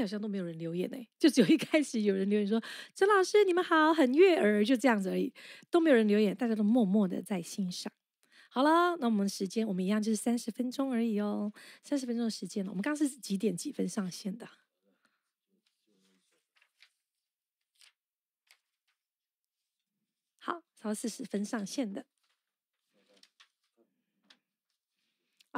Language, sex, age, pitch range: Chinese, female, 20-39, 205-270 Hz